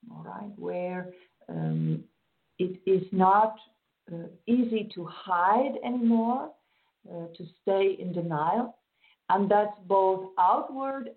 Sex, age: female, 50-69